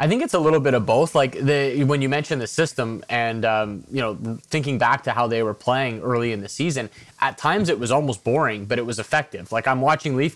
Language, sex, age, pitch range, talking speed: English, male, 20-39, 115-135 Hz, 255 wpm